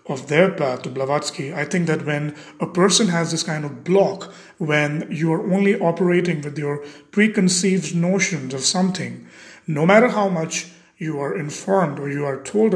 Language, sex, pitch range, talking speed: English, male, 150-190 Hz, 175 wpm